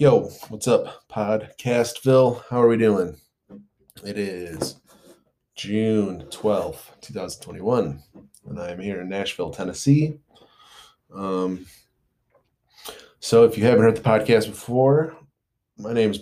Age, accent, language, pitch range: 20-39, American, English, 90-110 Hz